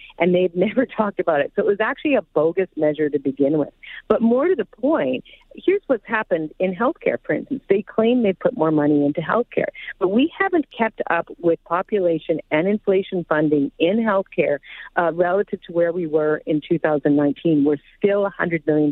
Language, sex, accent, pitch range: English, female, American, 160-210 Hz